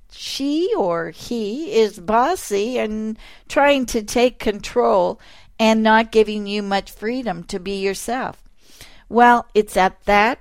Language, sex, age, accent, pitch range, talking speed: English, female, 50-69, American, 190-240 Hz, 135 wpm